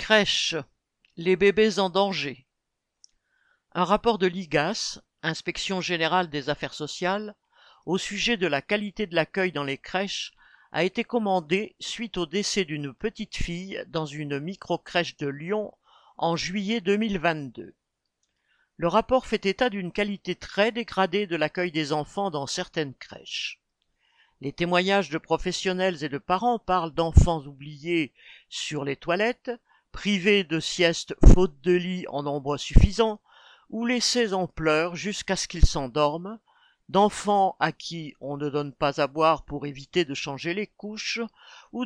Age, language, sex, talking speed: 50-69, French, male, 145 wpm